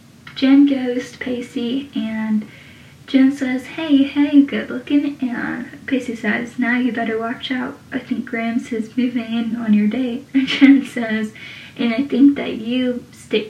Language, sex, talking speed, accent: English, female, 165 wpm, American